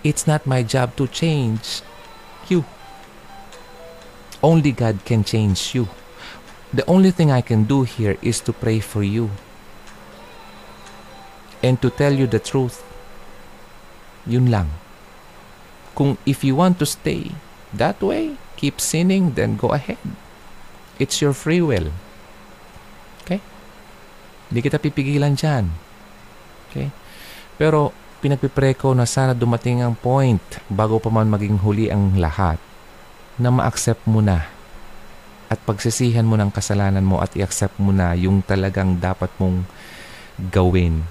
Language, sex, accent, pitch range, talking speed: Filipino, male, native, 95-140 Hz, 125 wpm